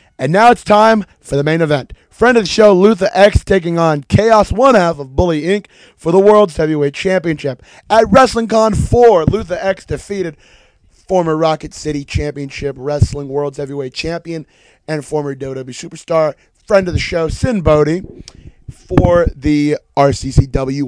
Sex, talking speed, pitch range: male, 155 wpm, 140-190 Hz